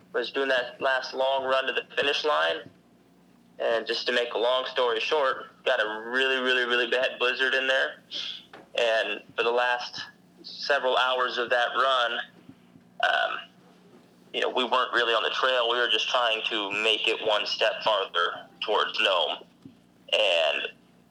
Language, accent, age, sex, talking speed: English, American, 30-49, male, 165 wpm